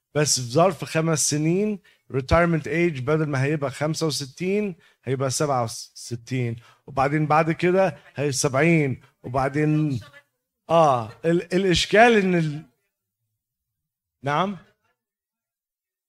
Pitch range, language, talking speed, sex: 135-180 Hz, Arabic, 90 wpm, male